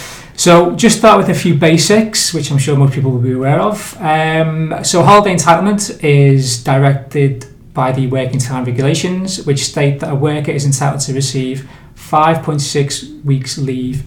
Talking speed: 165 wpm